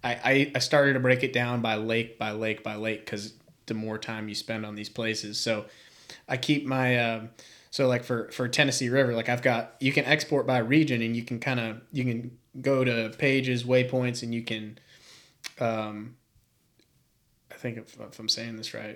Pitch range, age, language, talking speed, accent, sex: 115-130 Hz, 20-39, English, 215 wpm, American, male